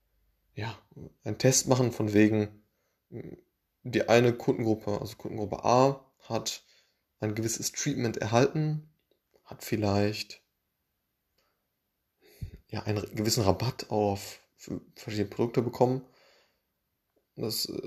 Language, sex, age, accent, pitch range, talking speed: German, male, 20-39, German, 105-120 Hz, 95 wpm